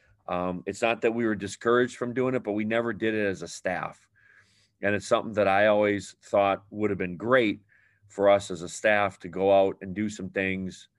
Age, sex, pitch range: 40-59, male, 95-105 Hz